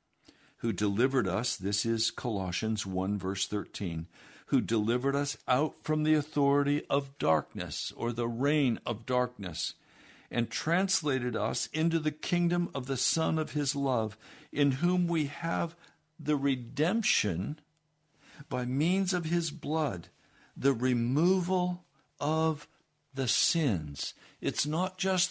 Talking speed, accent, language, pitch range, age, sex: 130 wpm, American, English, 110-160 Hz, 60-79, male